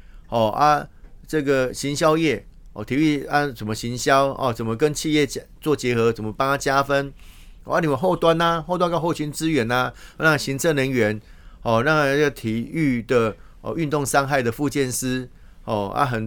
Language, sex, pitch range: Chinese, male, 105-145 Hz